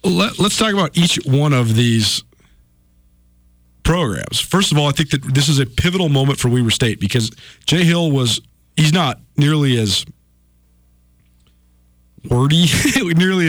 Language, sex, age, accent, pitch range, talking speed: English, male, 40-59, American, 110-155 Hz, 145 wpm